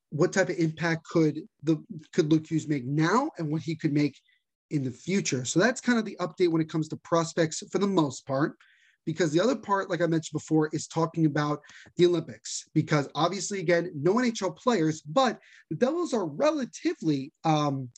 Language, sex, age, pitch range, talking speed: English, male, 30-49, 155-190 Hz, 195 wpm